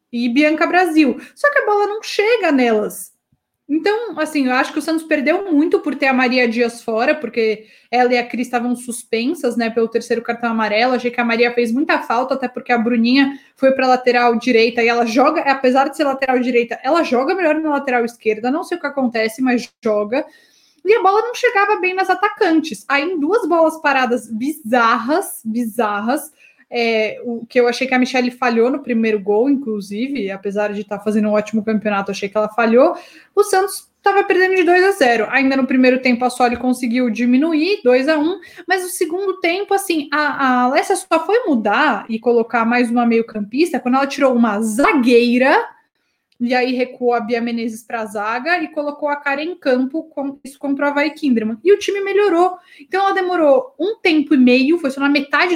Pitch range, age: 240-330 Hz, 20-39